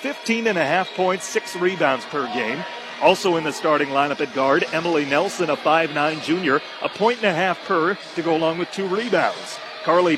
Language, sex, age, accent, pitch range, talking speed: English, male, 40-59, American, 155-185 Hz, 200 wpm